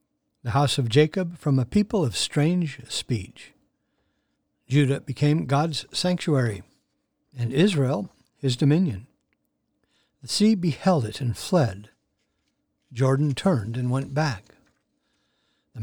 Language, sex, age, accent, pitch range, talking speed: English, male, 60-79, American, 125-165 Hz, 115 wpm